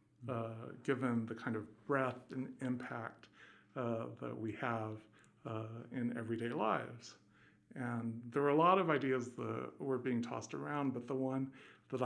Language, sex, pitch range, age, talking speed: English, male, 110-125 Hz, 50-69, 160 wpm